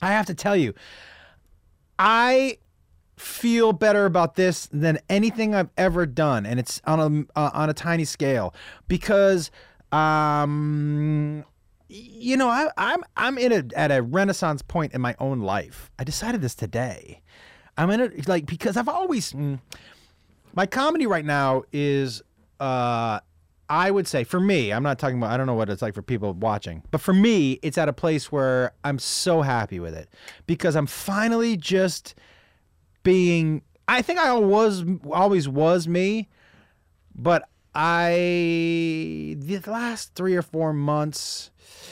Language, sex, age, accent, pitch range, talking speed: English, male, 30-49, American, 130-195 Hz, 155 wpm